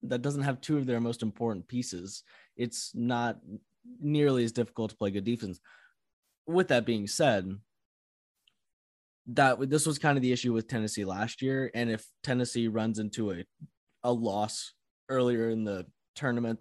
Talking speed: 165 wpm